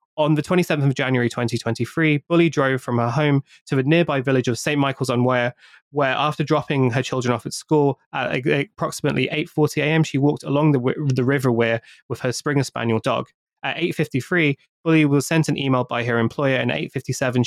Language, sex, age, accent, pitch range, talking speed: English, male, 20-39, British, 120-145 Hz, 190 wpm